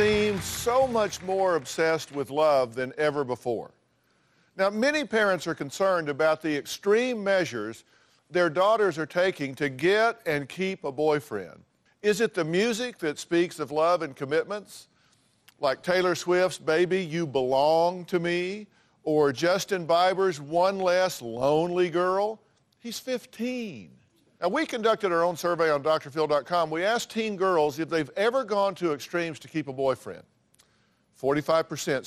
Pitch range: 150-195 Hz